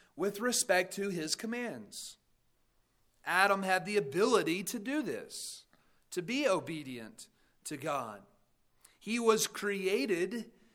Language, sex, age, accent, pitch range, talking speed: English, male, 40-59, American, 155-205 Hz, 110 wpm